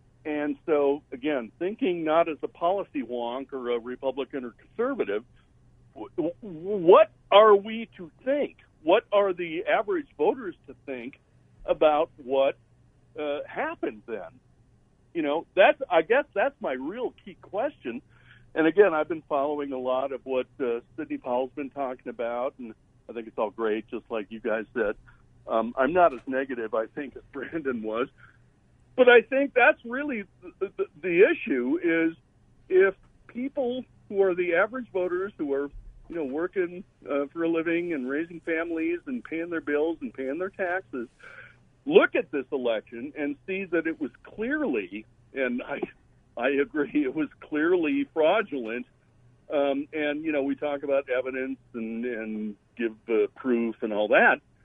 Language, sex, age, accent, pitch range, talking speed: English, male, 60-79, American, 130-205 Hz, 160 wpm